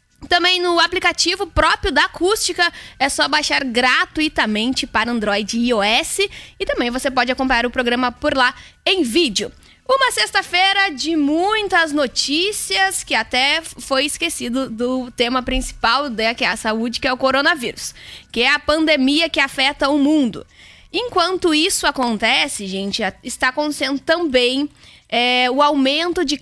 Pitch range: 250-310 Hz